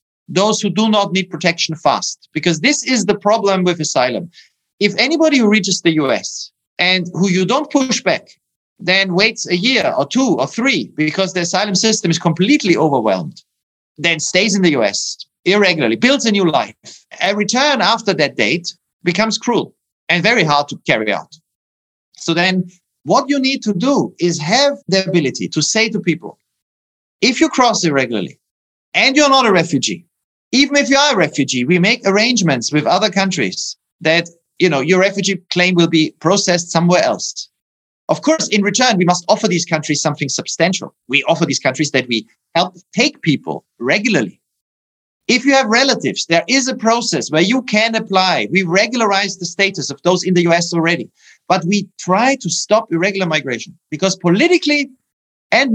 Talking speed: 175 wpm